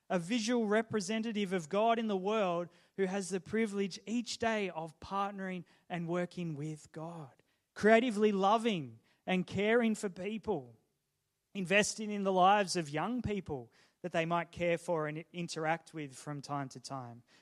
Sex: male